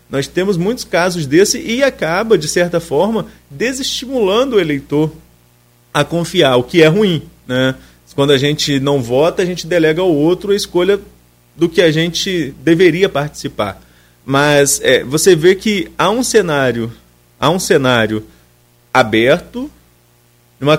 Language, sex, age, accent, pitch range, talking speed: Portuguese, male, 30-49, Brazilian, 130-195 Hz, 145 wpm